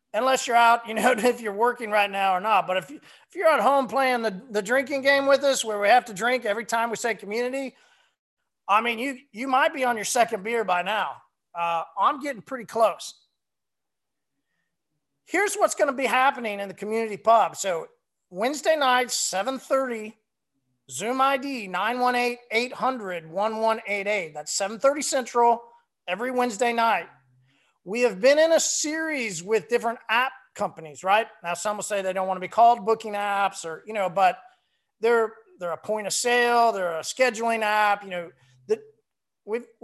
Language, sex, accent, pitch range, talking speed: English, male, American, 205-265 Hz, 175 wpm